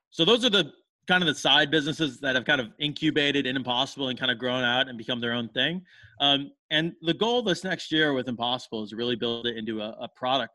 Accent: American